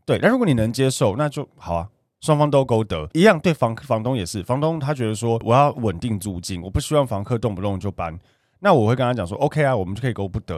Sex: male